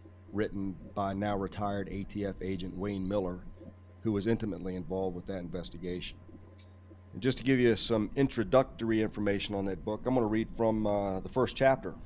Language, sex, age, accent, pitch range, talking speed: English, male, 40-59, American, 95-110 Hz, 165 wpm